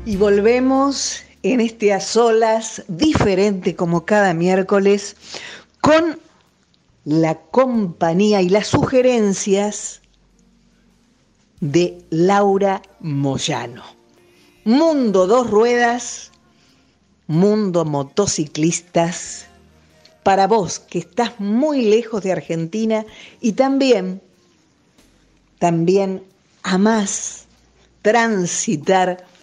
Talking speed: 75 wpm